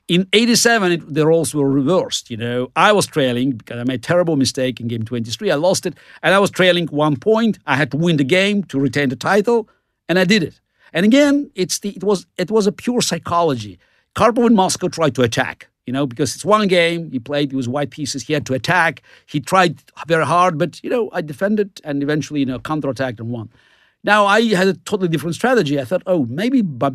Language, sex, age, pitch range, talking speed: English, male, 50-69, 135-195 Hz, 230 wpm